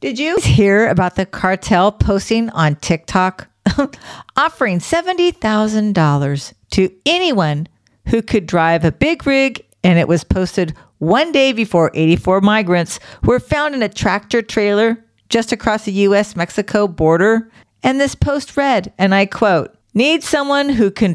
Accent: American